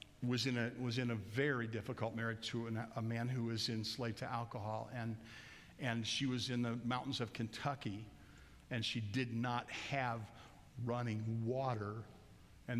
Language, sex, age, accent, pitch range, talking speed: English, male, 50-69, American, 110-130 Hz, 165 wpm